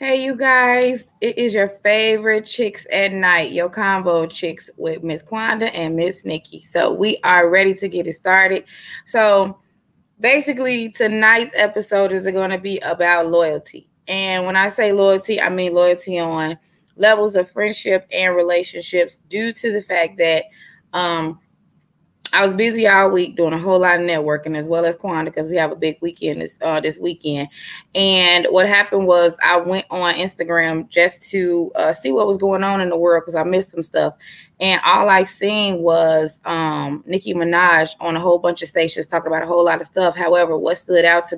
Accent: American